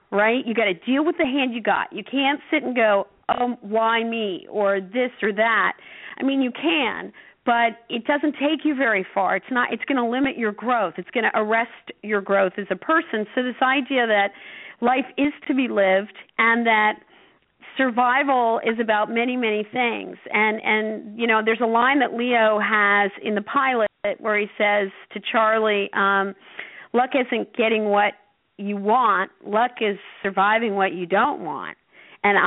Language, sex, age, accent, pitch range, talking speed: English, female, 50-69, American, 200-240 Hz, 185 wpm